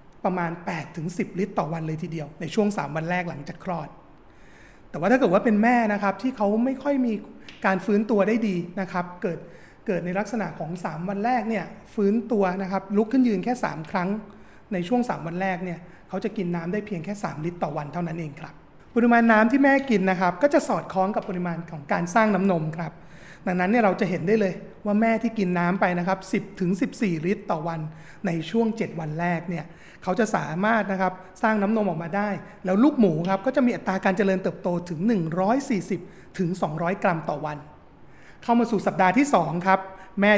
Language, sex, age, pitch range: Thai, male, 30-49, 175-220 Hz